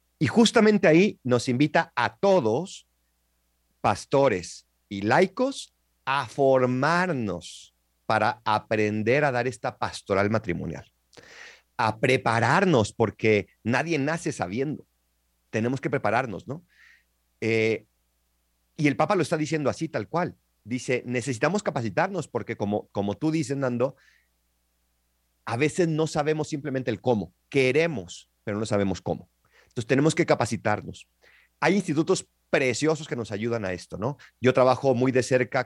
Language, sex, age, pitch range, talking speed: Spanish, male, 40-59, 100-135 Hz, 130 wpm